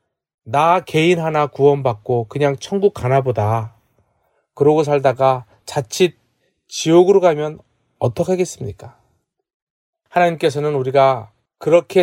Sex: male